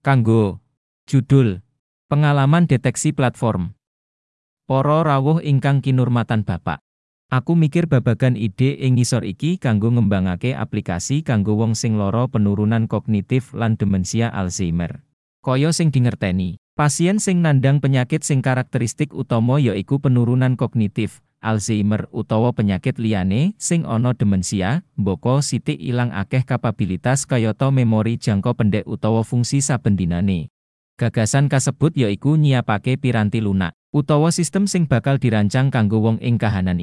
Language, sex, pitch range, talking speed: English, male, 105-135 Hz, 125 wpm